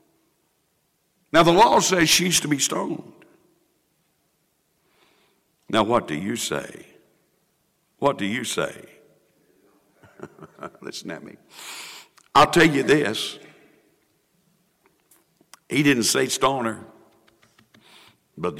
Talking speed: 95 wpm